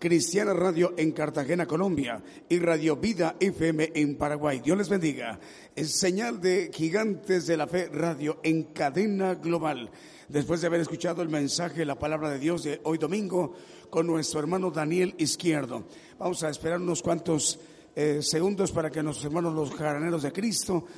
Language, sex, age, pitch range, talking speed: Spanish, male, 50-69, 150-175 Hz, 165 wpm